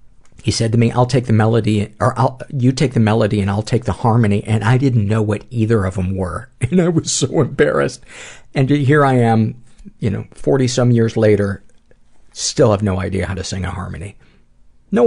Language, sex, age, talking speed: English, male, 50-69, 205 wpm